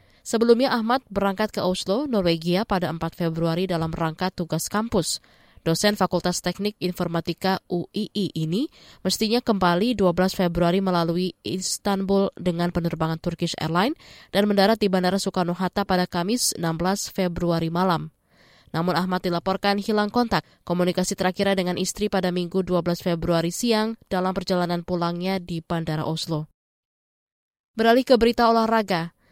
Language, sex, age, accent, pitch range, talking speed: Indonesian, female, 20-39, native, 175-210 Hz, 130 wpm